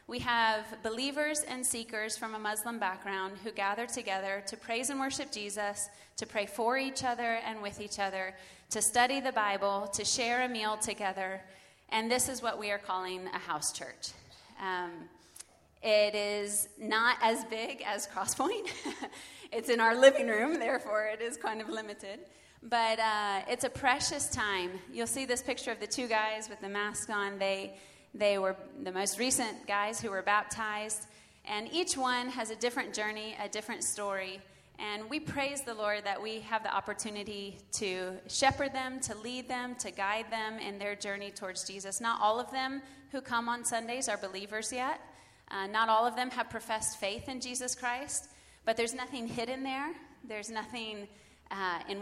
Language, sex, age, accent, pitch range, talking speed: English, female, 30-49, American, 200-245 Hz, 180 wpm